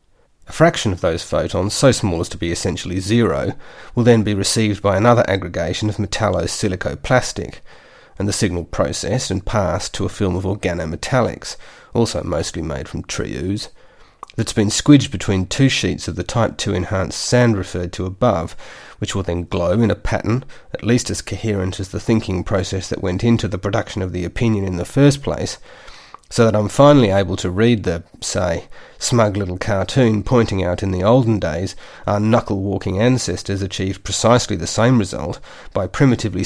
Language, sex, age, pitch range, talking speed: English, male, 30-49, 95-115 Hz, 180 wpm